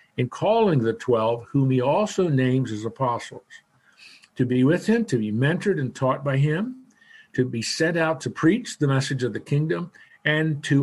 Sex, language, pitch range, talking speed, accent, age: male, English, 130-175 Hz, 190 wpm, American, 50-69